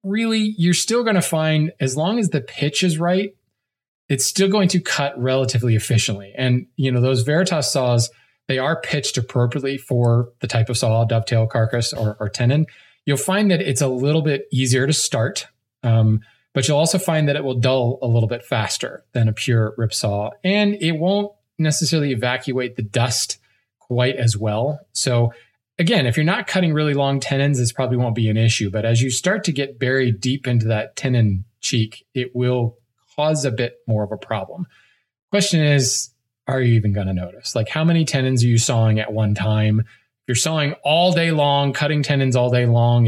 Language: English